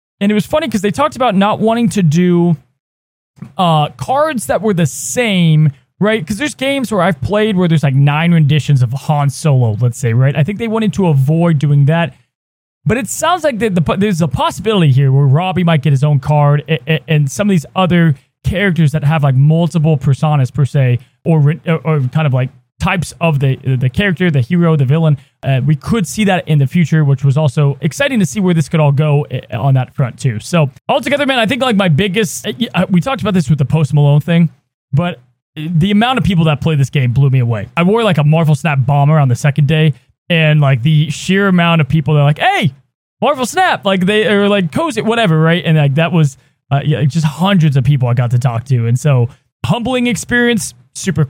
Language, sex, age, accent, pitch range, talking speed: English, male, 20-39, American, 145-200 Hz, 225 wpm